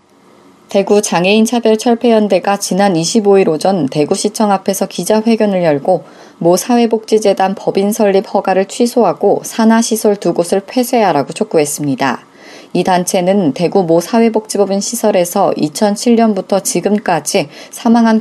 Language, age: Korean, 20-39